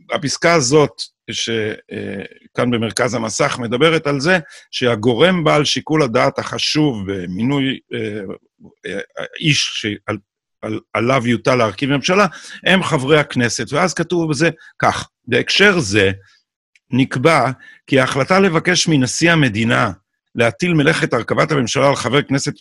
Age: 50-69